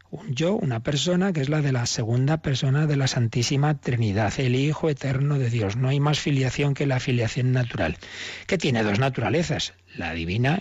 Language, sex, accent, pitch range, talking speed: Spanish, male, Spanish, 120-155 Hz, 190 wpm